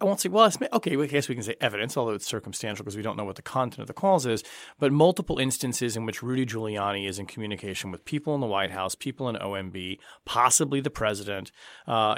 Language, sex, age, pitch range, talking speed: English, male, 30-49, 105-140 Hz, 245 wpm